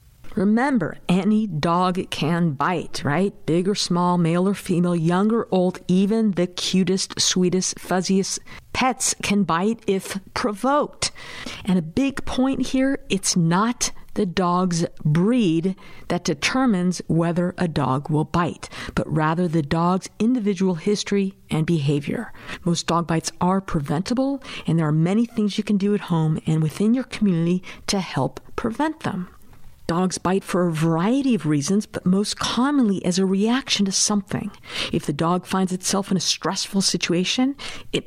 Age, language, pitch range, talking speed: 50-69, English, 170-215 Hz, 155 wpm